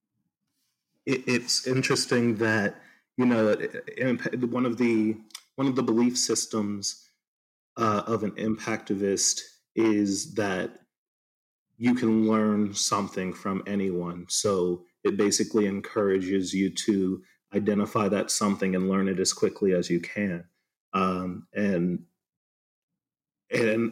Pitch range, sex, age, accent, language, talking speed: 105-125 Hz, male, 30-49, American, English, 115 wpm